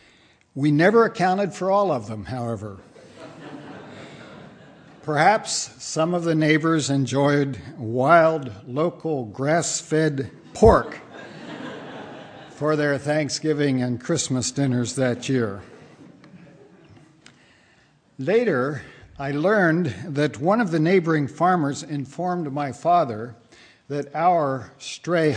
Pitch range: 130-170 Hz